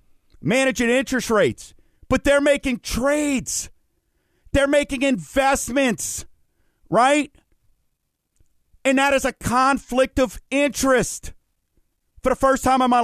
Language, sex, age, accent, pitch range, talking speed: English, male, 40-59, American, 175-255 Hz, 110 wpm